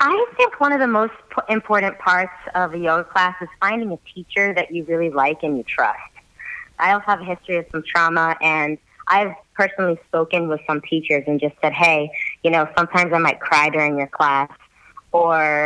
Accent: American